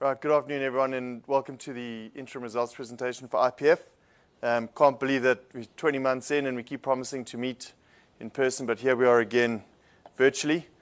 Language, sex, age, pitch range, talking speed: English, male, 20-39, 120-135 Hz, 195 wpm